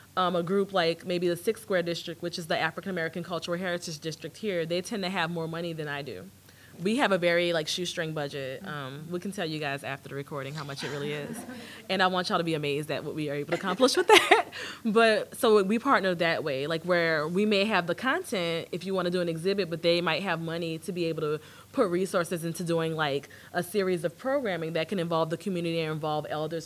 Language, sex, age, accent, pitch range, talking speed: English, female, 20-39, American, 160-205 Hz, 245 wpm